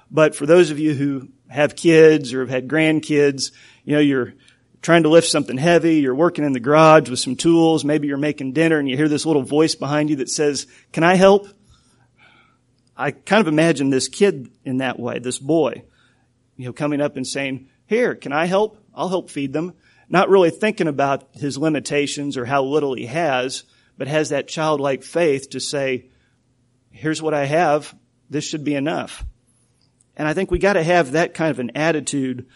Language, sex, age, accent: English, male, 40-59, American